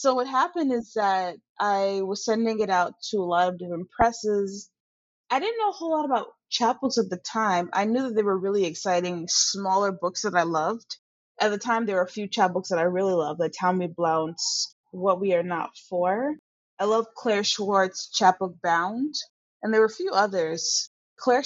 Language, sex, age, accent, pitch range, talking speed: English, female, 20-39, American, 175-220 Hz, 200 wpm